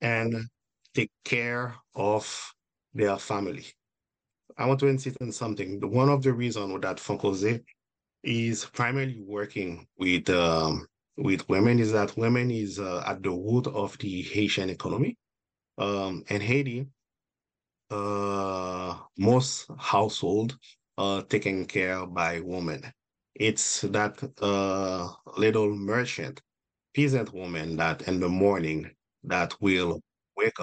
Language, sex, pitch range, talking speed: English, male, 95-120 Hz, 120 wpm